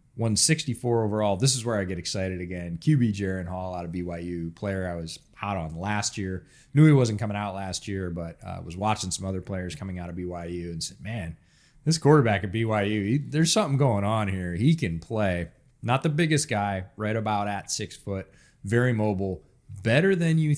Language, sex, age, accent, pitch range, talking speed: English, male, 30-49, American, 95-125 Hz, 205 wpm